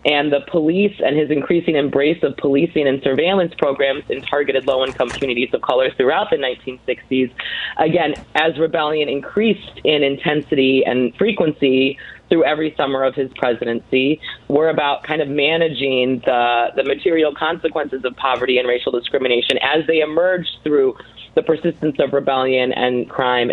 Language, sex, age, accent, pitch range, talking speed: English, female, 30-49, American, 130-160 Hz, 150 wpm